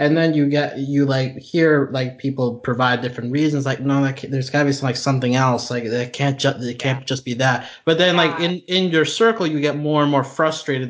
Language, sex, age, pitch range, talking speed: English, male, 20-39, 115-155 Hz, 250 wpm